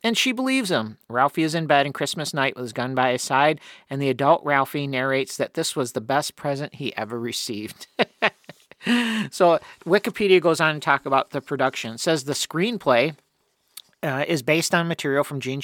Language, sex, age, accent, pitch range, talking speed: English, male, 50-69, American, 135-170 Hz, 195 wpm